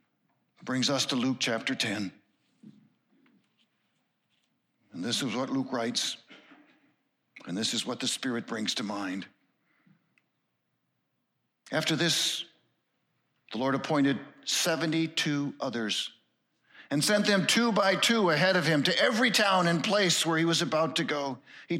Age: 60-79